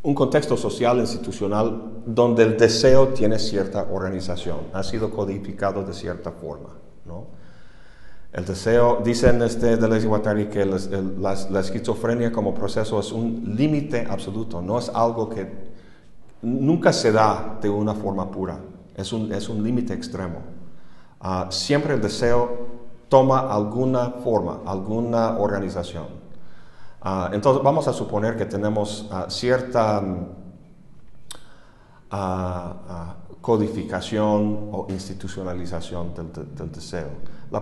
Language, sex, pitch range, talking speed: Spanish, male, 95-120 Hz, 130 wpm